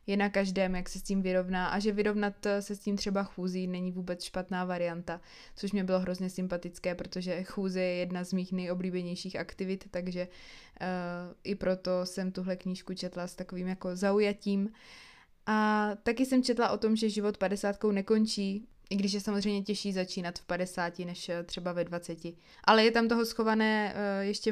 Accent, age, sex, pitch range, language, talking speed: native, 20-39, female, 180-205 Hz, Czech, 180 wpm